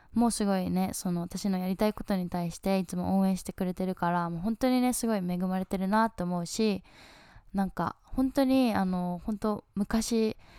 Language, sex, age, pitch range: Japanese, female, 10-29, 180-225 Hz